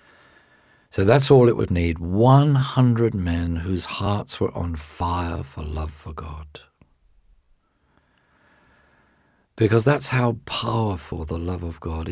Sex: male